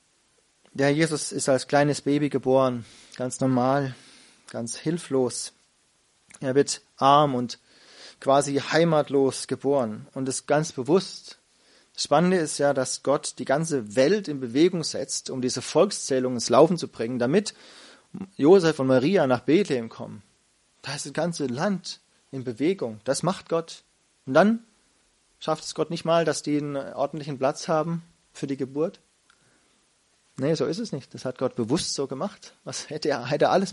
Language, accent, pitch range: German, German, 130-160 Hz